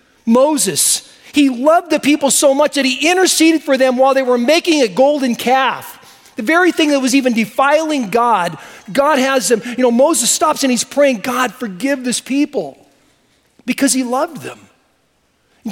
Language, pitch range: English, 230-295 Hz